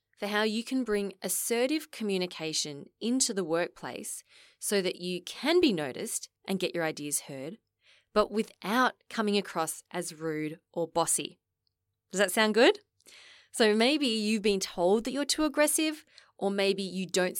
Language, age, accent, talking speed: English, 20-39, Australian, 160 wpm